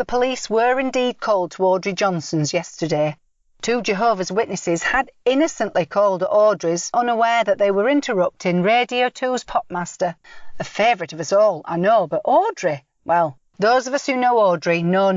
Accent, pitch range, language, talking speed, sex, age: British, 170-235 Hz, English, 165 wpm, female, 40-59